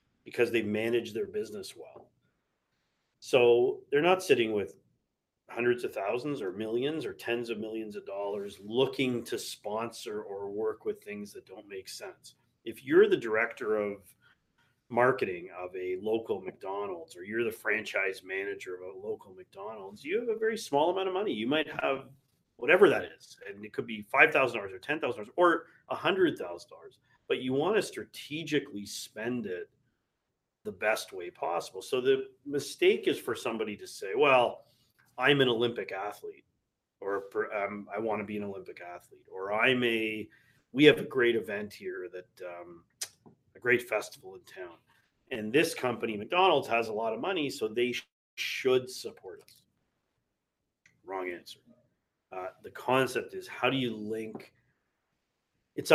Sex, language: male, English